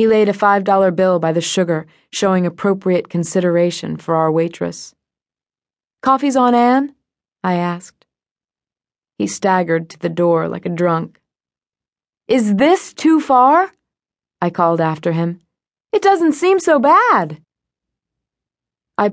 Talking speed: 130 wpm